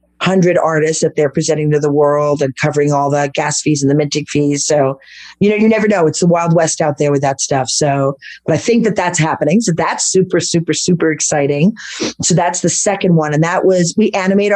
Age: 40-59